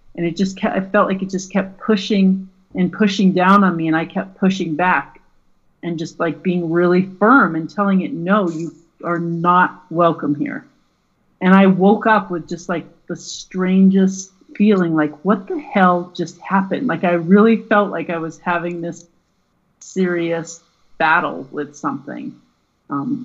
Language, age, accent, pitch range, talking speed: English, 40-59, American, 155-190 Hz, 170 wpm